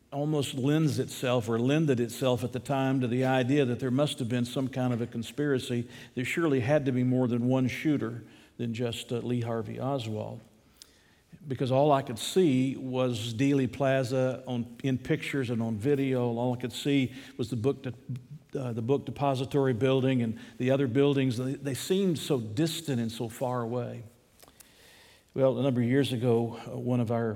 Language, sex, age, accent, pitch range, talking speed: English, male, 50-69, American, 120-140 Hz, 185 wpm